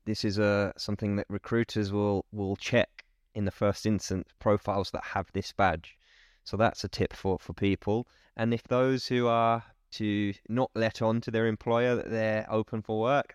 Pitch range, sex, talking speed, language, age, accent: 95-115 Hz, male, 190 wpm, English, 20-39, British